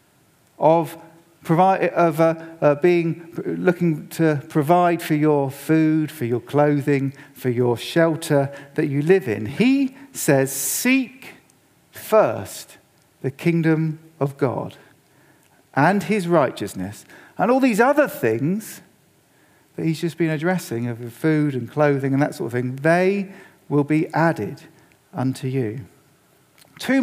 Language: English